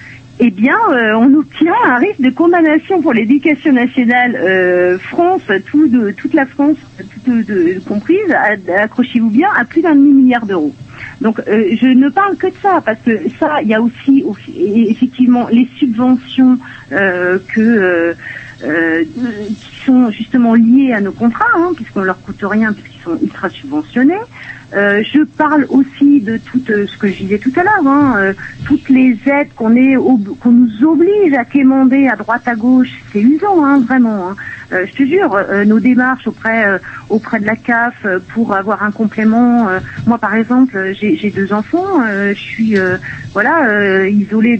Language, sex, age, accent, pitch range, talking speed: French, female, 50-69, French, 210-280 Hz, 185 wpm